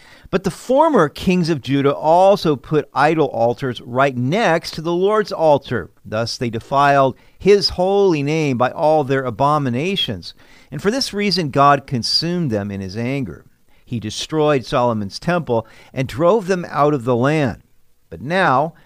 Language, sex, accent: English, male, American